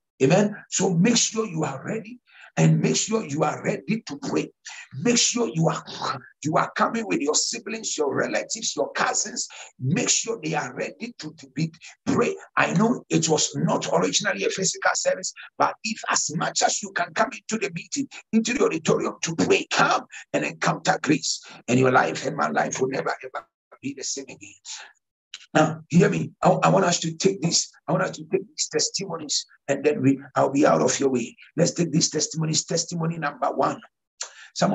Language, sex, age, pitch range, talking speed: English, male, 60-79, 150-215 Hz, 195 wpm